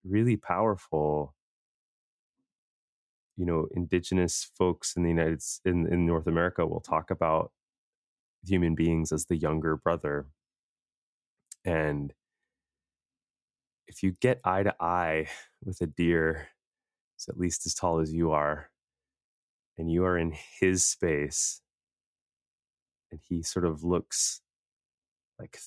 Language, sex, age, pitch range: English, male, 20-39, 75-90 Hz